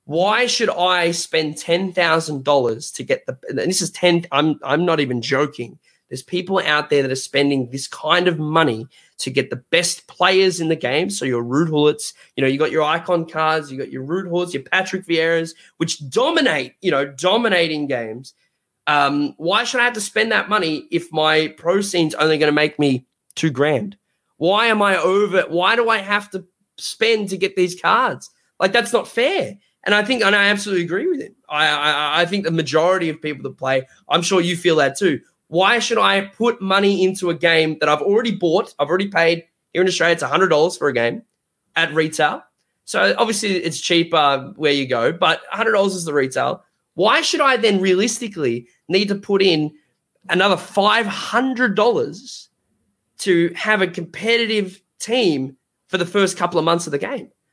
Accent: Australian